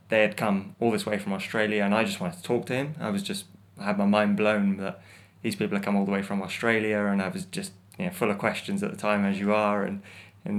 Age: 20-39